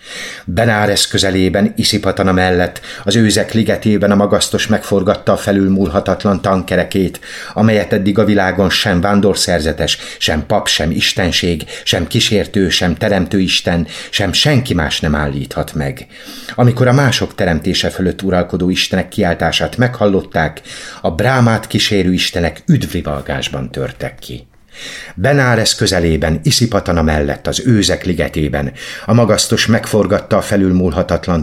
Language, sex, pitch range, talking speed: Hungarian, male, 80-105 Hz, 120 wpm